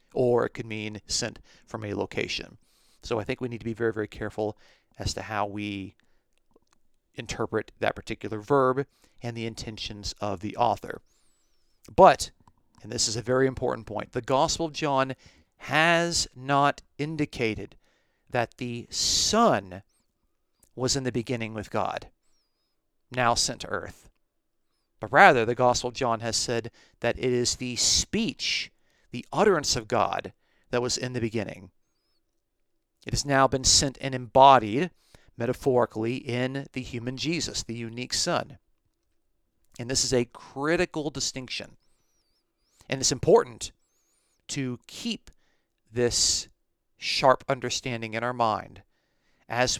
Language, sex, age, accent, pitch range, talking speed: English, male, 40-59, American, 110-135 Hz, 140 wpm